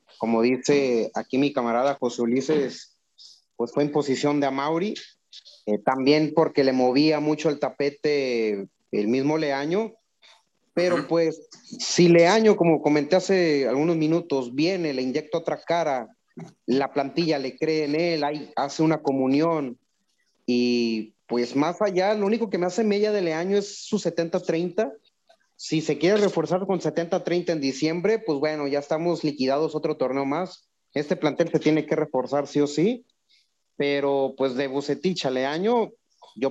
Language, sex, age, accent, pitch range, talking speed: Spanish, male, 30-49, Mexican, 135-180 Hz, 155 wpm